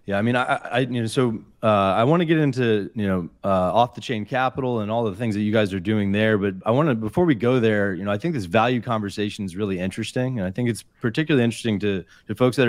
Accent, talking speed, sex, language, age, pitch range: American, 280 wpm, male, English, 30-49, 95-120 Hz